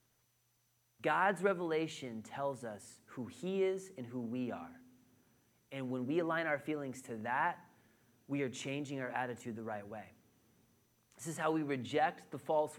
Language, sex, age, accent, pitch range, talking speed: English, male, 30-49, American, 125-175 Hz, 160 wpm